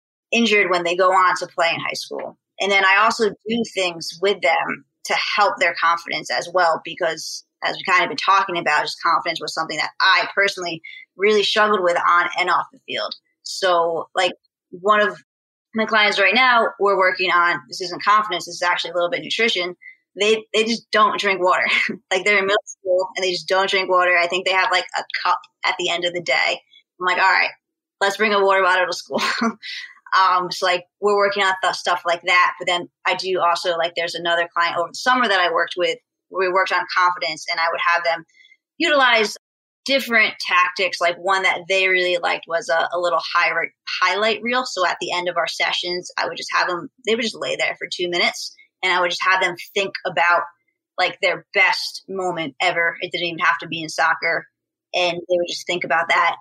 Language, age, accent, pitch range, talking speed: English, 20-39, American, 175-205 Hz, 220 wpm